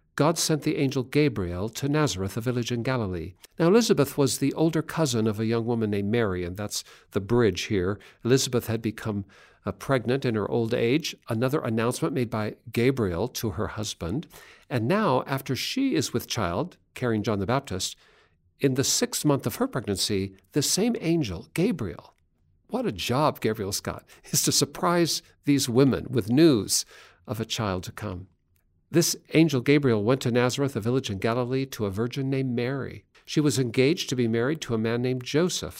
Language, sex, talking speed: English, male, 185 wpm